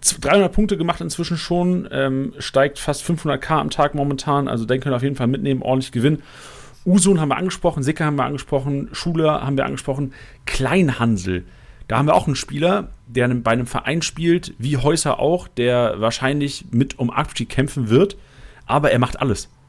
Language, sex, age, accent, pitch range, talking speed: German, male, 40-59, German, 115-145 Hz, 185 wpm